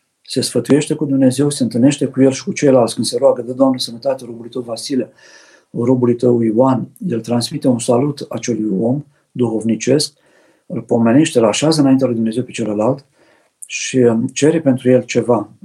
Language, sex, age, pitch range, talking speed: Romanian, male, 50-69, 120-135 Hz, 170 wpm